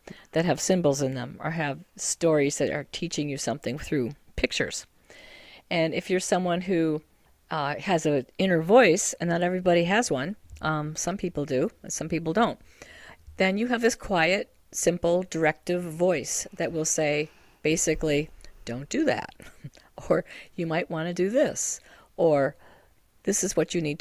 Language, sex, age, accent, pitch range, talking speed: English, female, 50-69, American, 155-185 Hz, 160 wpm